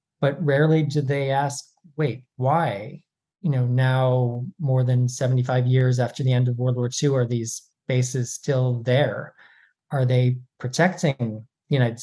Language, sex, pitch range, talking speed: English, male, 125-155 Hz, 155 wpm